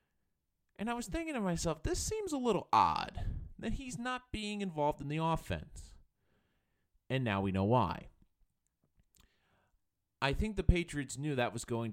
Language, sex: English, male